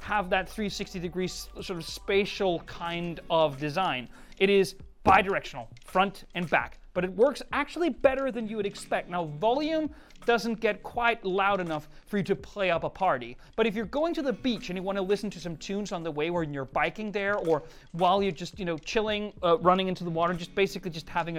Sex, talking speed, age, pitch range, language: male, 215 wpm, 30-49, 175-225 Hz, English